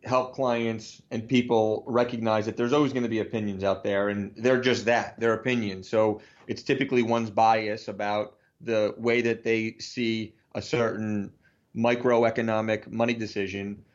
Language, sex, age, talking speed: English, male, 30-49, 155 wpm